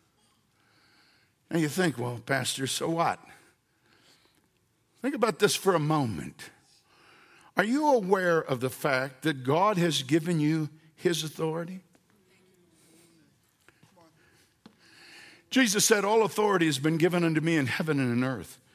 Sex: male